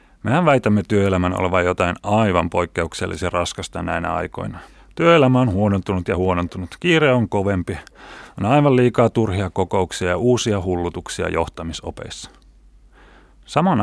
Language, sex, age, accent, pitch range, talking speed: Finnish, male, 30-49, native, 90-120 Hz, 120 wpm